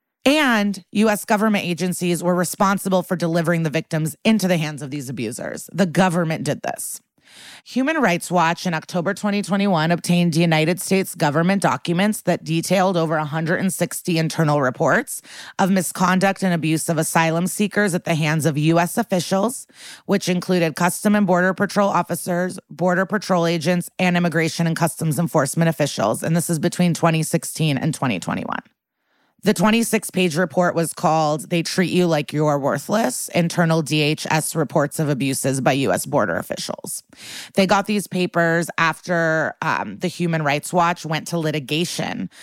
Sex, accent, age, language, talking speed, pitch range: female, American, 30-49, English, 150 wpm, 160-185 Hz